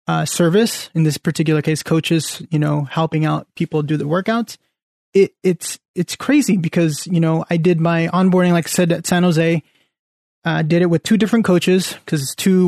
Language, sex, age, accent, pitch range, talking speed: English, male, 20-39, American, 155-180 Hz, 200 wpm